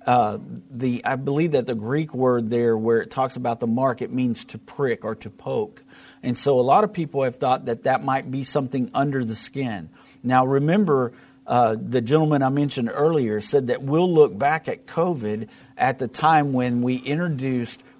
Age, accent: 50-69, American